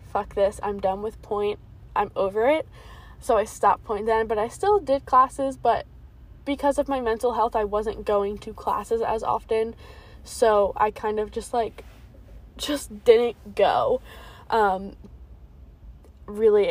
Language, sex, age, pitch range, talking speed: English, female, 10-29, 200-230 Hz, 150 wpm